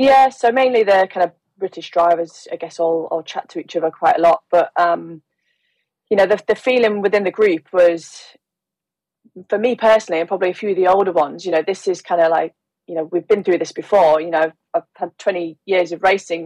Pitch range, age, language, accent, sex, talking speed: 165-190 Hz, 20-39, English, British, female, 230 wpm